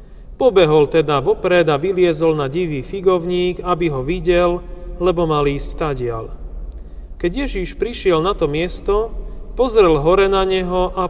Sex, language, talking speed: male, Slovak, 140 wpm